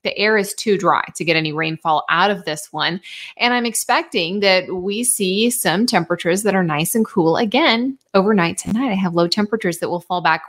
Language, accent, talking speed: English, American, 210 wpm